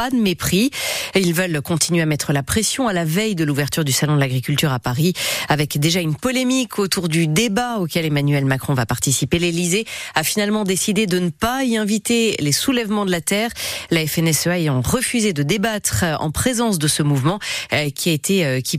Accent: French